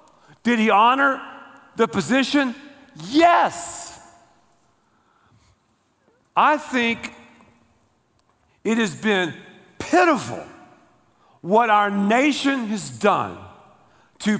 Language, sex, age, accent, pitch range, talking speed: English, male, 50-69, American, 205-290 Hz, 75 wpm